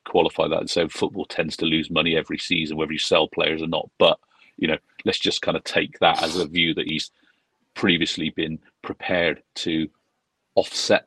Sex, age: male, 40-59